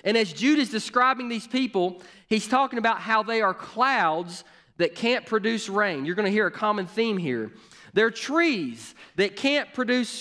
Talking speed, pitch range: 180 wpm, 165-230 Hz